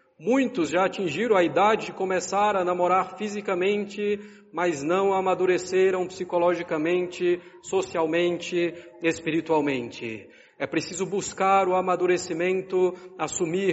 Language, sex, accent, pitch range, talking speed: Portuguese, male, Brazilian, 170-195 Hz, 95 wpm